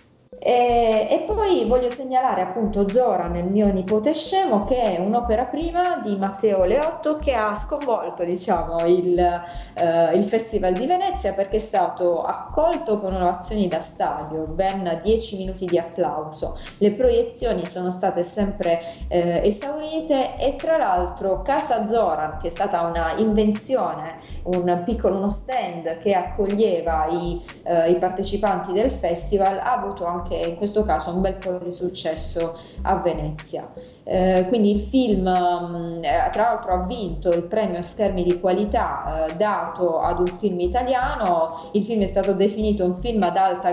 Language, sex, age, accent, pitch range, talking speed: Italian, female, 20-39, native, 175-215 Hz, 155 wpm